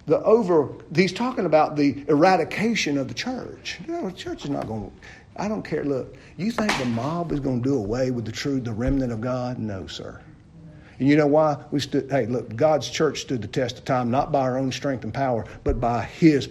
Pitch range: 125-190 Hz